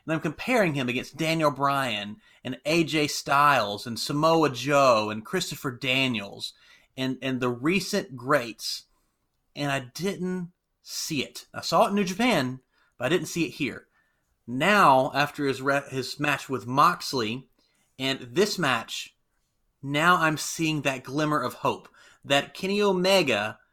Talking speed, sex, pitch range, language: 150 wpm, male, 130-170 Hz, English